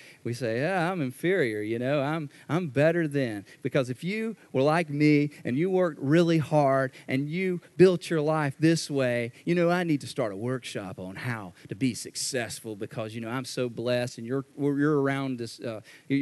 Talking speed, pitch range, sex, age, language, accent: 200 wpm, 125-160 Hz, male, 40-59, English, American